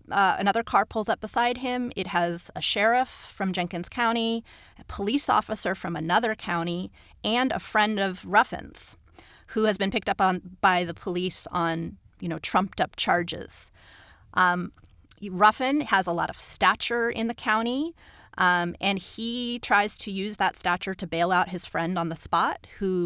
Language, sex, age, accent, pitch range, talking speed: English, female, 30-49, American, 180-220 Hz, 175 wpm